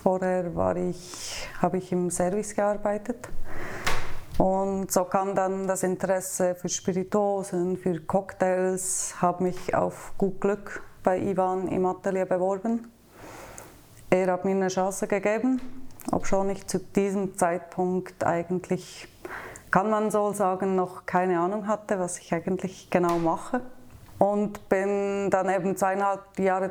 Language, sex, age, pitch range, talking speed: German, female, 30-49, 180-200 Hz, 130 wpm